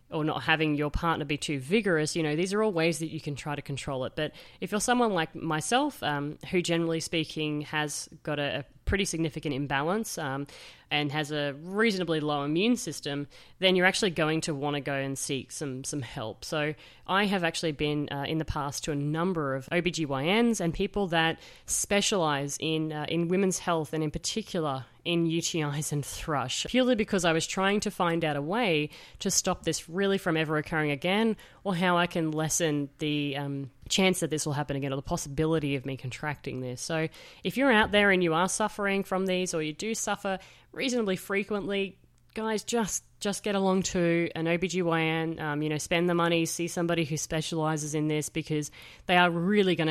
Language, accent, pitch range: English, Australian, 150-185 Hz